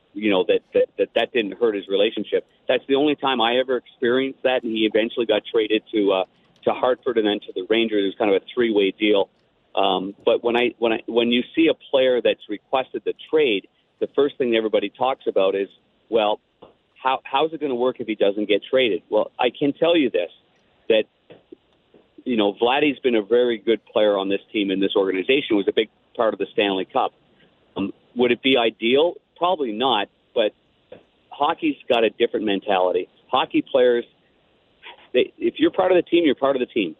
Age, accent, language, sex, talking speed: 50-69, American, English, male, 210 wpm